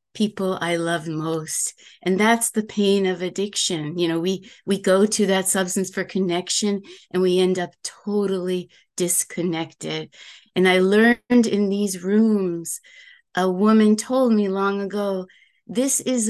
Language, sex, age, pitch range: English, female, 30-49, 185-225 Hz